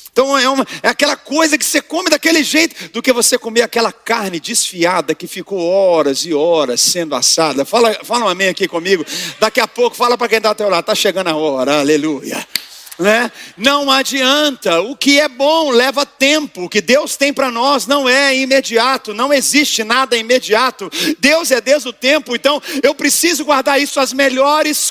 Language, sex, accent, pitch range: Portuguese, male, Brazilian, 230-285 Hz